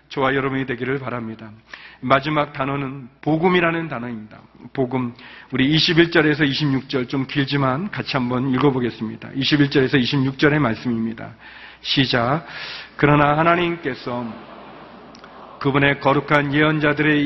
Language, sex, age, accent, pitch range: Korean, male, 40-59, native, 135-155 Hz